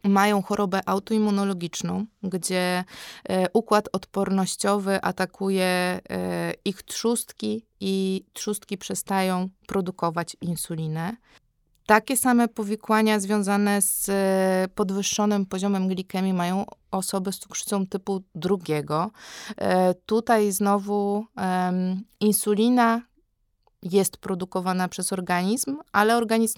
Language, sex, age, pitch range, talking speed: Polish, female, 20-39, 185-210 Hz, 85 wpm